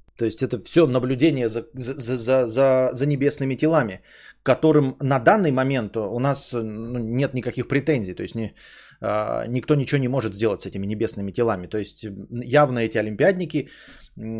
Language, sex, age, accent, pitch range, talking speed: Russian, male, 30-49, native, 120-160 Hz, 140 wpm